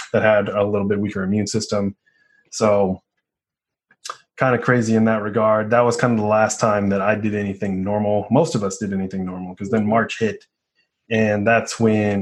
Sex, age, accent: male, 20-39, American